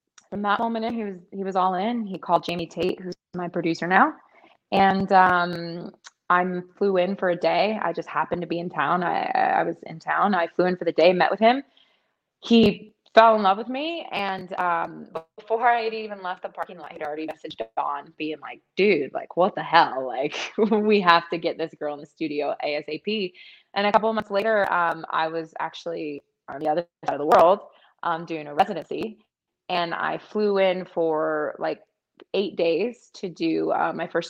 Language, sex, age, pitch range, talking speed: English, female, 20-39, 165-205 Hz, 210 wpm